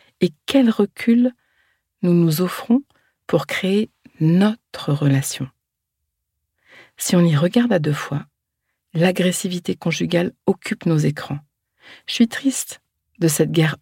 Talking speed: 120 wpm